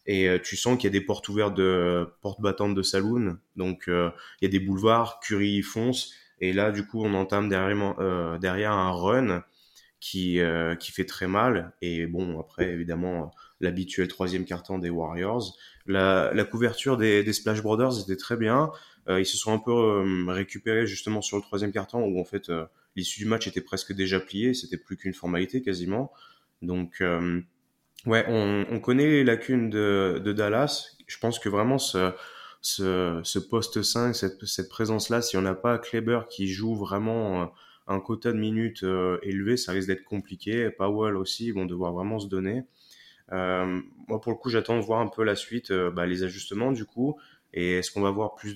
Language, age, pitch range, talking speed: French, 20-39, 90-110 Hz, 195 wpm